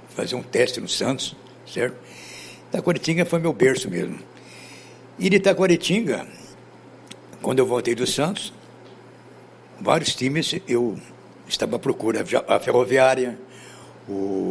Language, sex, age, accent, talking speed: Portuguese, male, 60-79, Brazilian, 110 wpm